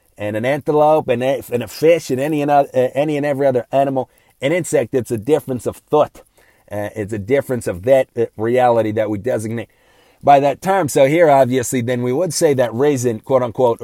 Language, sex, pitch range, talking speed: English, male, 115-140 Hz, 215 wpm